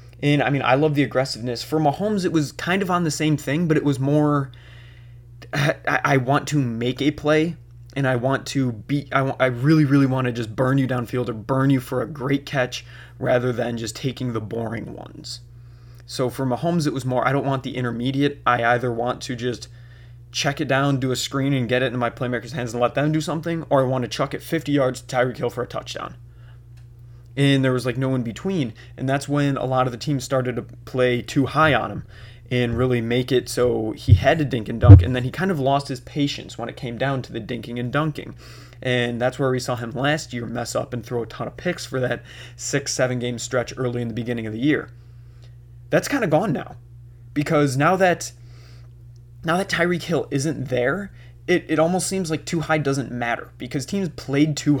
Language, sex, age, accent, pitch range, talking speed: English, male, 20-39, American, 120-145 Hz, 225 wpm